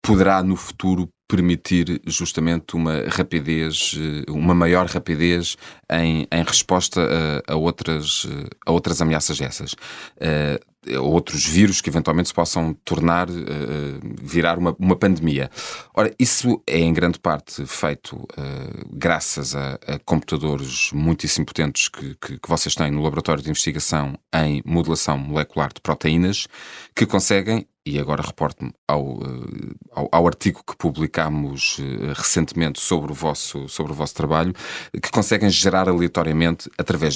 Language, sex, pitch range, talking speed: Portuguese, male, 75-85 Hz, 125 wpm